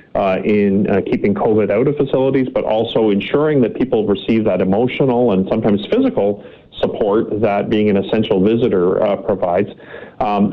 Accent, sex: American, male